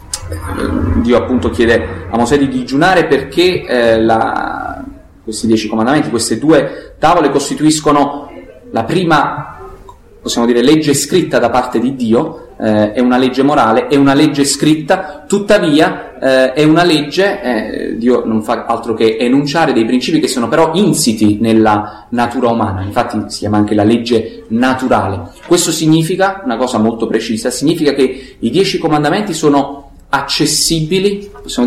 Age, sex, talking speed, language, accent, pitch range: 30-49, male, 145 wpm, Italian, native, 110-155 Hz